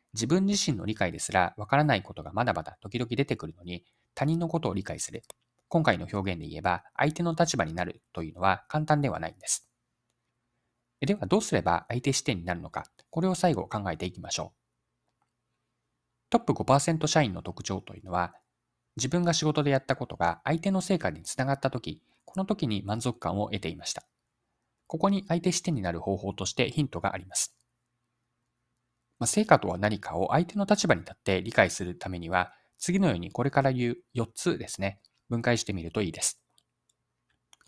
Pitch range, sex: 95-145 Hz, male